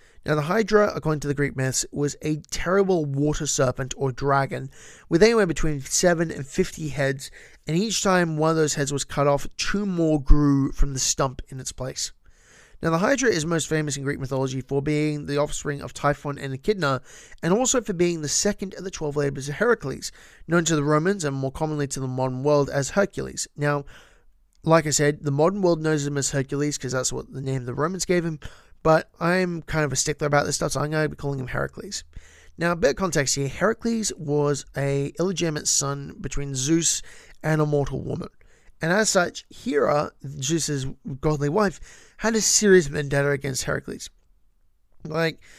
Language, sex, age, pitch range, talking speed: English, male, 30-49, 140-170 Hz, 200 wpm